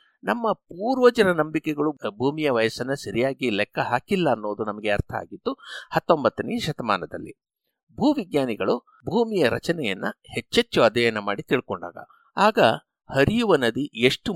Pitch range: 115-175 Hz